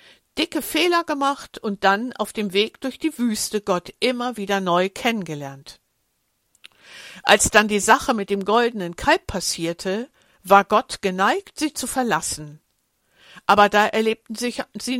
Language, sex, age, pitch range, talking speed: German, female, 60-79, 185-260 Hz, 140 wpm